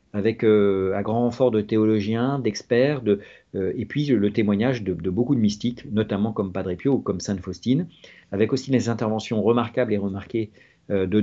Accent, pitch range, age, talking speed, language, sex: French, 100-130 Hz, 40-59, 200 wpm, French, male